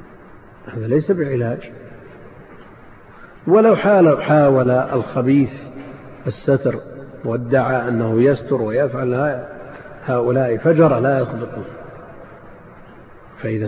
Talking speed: 75 wpm